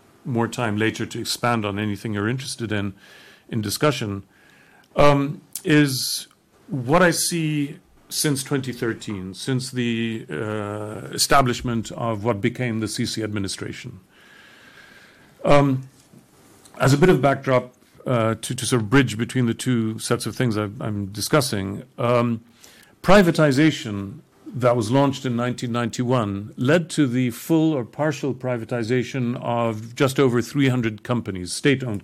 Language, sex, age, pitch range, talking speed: English, male, 50-69, 110-140 Hz, 130 wpm